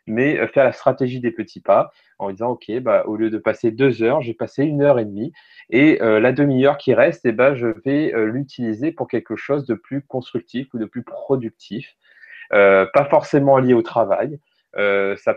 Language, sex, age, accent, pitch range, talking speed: French, male, 20-39, French, 105-130 Hz, 205 wpm